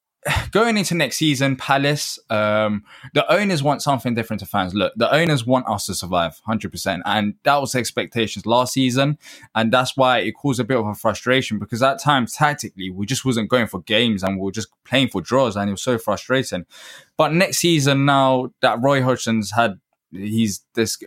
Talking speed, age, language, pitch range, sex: 195 wpm, 10-29, English, 105-135 Hz, male